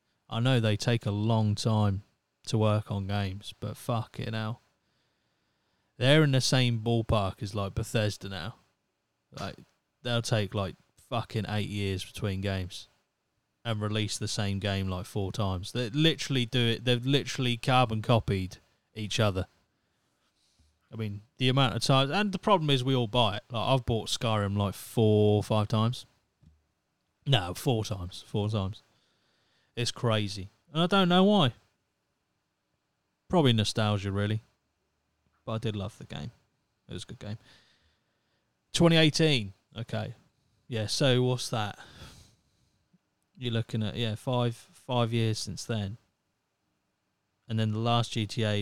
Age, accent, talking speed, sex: 30-49, British, 150 wpm, male